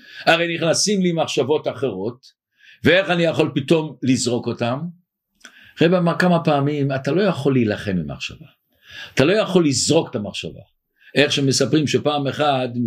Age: 50-69